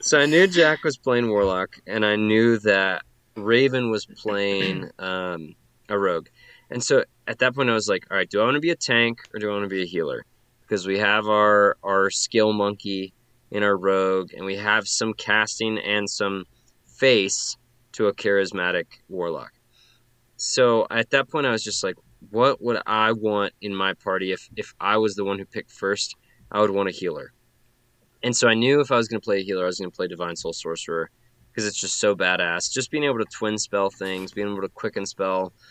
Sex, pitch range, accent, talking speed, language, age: male, 100-120 Hz, American, 215 wpm, English, 20-39